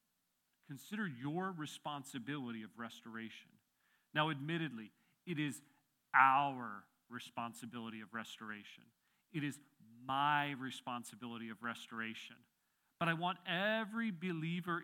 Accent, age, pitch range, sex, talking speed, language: American, 40-59, 125-175 Hz, male, 95 wpm, English